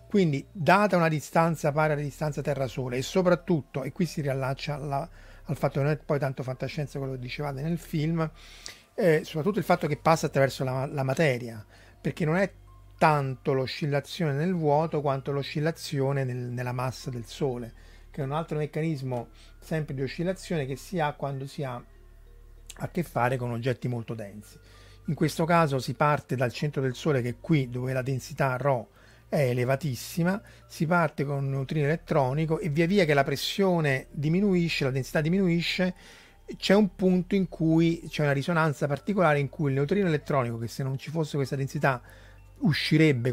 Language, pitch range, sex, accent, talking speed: Italian, 125-160 Hz, male, native, 180 wpm